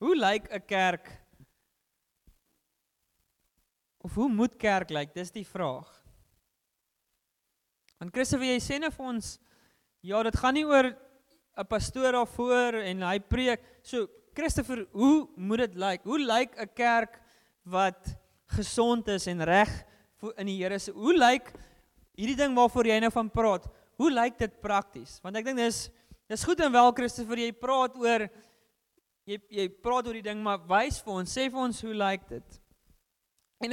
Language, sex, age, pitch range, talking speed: English, male, 20-39, 195-250 Hz, 170 wpm